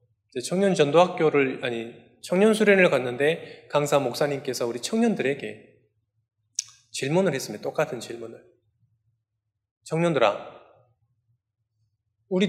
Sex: male